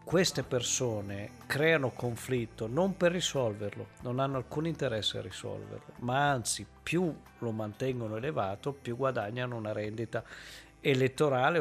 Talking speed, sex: 125 wpm, male